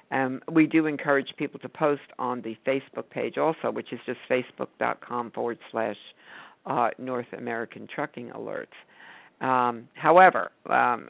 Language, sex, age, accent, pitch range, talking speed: English, female, 50-69, American, 130-150 Hz, 145 wpm